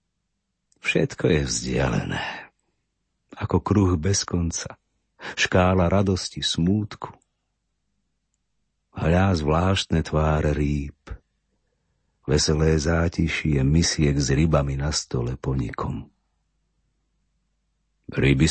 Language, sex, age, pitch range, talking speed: Slovak, male, 50-69, 75-95 Hz, 75 wpm